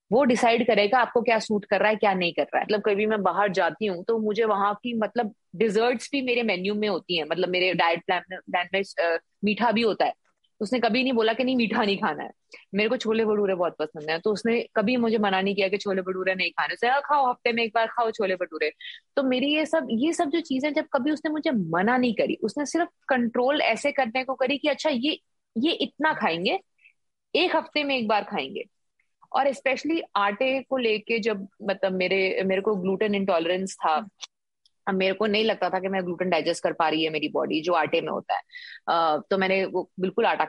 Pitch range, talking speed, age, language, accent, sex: 185-245 Hz, 225 wpm, 30-49, Hindi, native, female